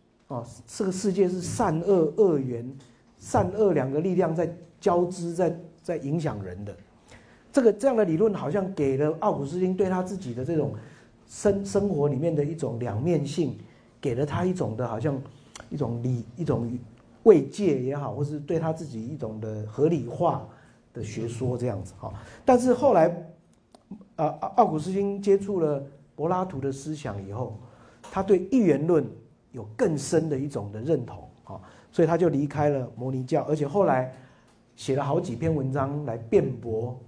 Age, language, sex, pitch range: 50-69, Chinese, male, 120-170 Hz